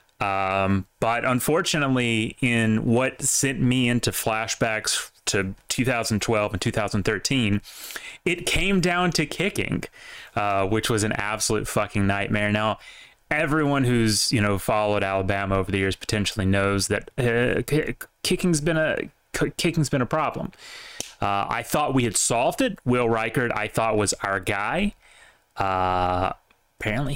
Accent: American